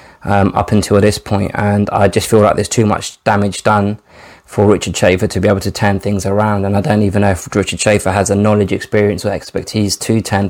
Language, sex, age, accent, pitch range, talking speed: English, male, 20-39, British, 100-110 Hz, 235 wpm